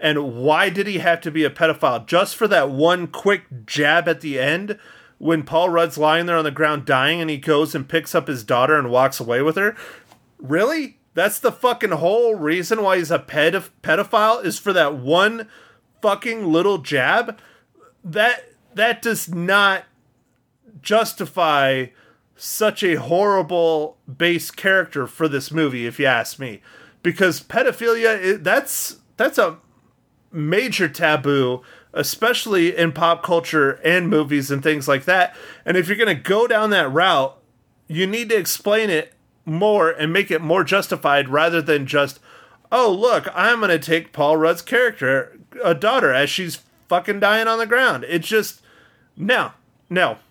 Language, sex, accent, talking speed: English, male, American, 160 wpm